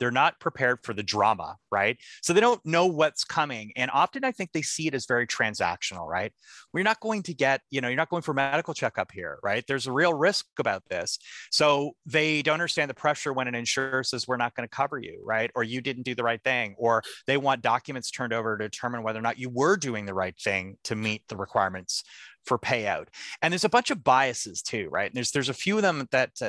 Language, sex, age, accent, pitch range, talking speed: English, male, 30-49, American, 115-155 Hz, 245 wpm